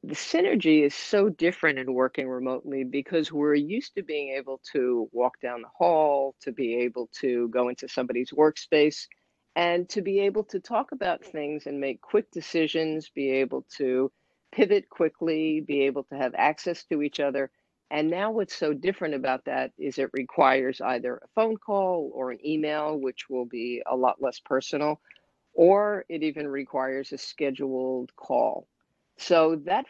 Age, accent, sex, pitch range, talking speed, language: 50-69, American, female, 135-160 Hz, 170 wpm, English